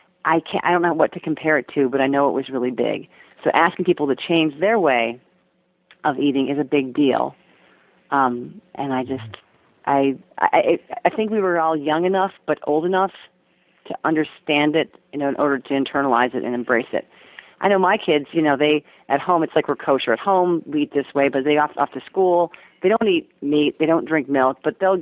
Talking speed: 225 wpm